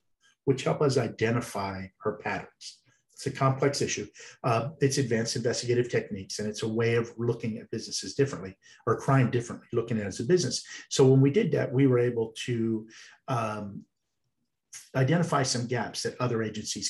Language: English